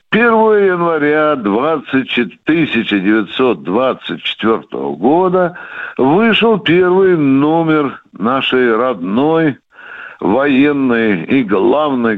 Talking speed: 60 wpm